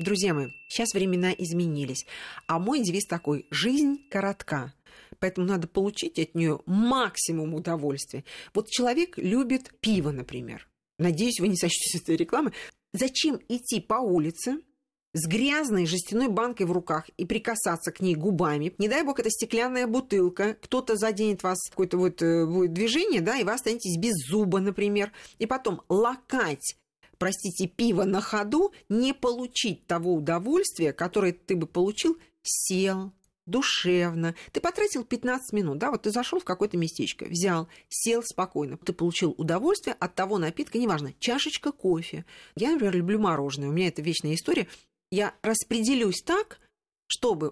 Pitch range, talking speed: 170-235 Hz, 150 wpm